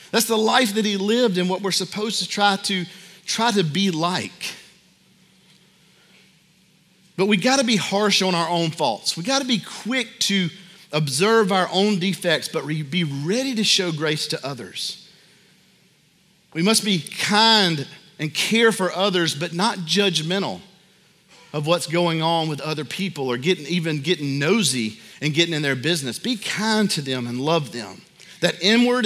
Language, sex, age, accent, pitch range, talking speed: English, male, 40-59, American, 170-210 Hz, 165 wpm